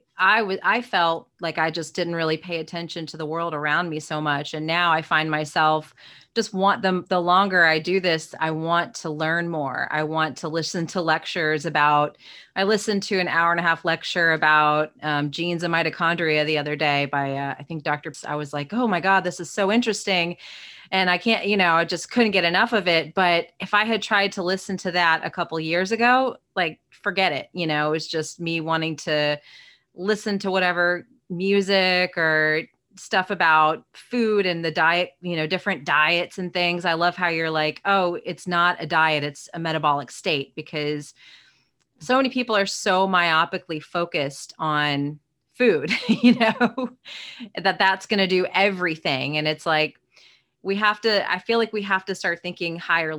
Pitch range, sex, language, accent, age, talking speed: 155-190 Hz, female, English, American, 30-49, 200 wpm